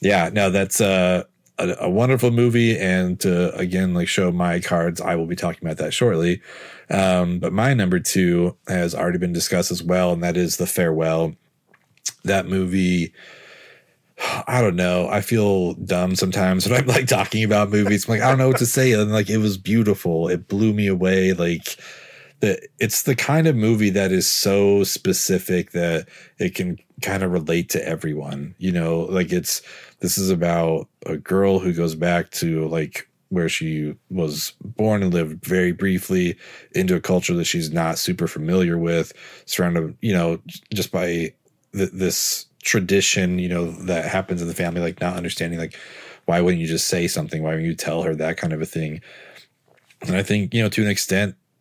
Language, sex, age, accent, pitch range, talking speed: English, male, 30-49, American, 85-100 Hz, 190 wpm